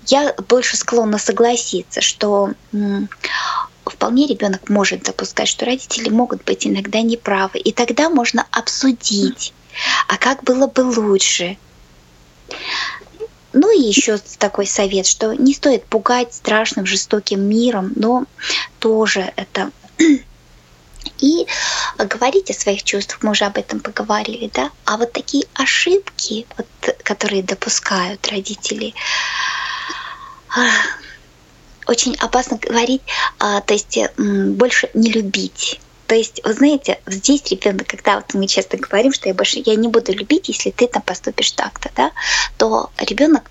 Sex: female